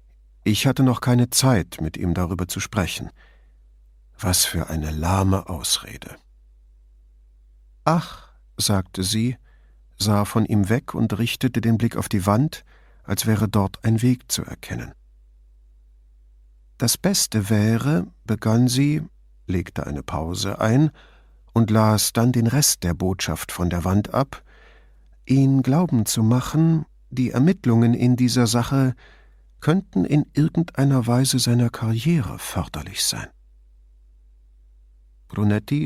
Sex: male